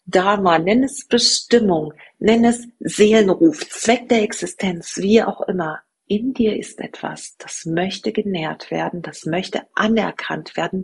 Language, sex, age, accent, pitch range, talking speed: German, female, 40-59, German, 165-215 Hz, 140 wpm